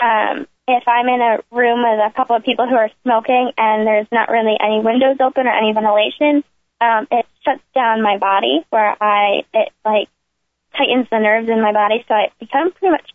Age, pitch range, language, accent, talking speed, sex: 10-29, 225-285 Hz, English, American, 205 wpm, female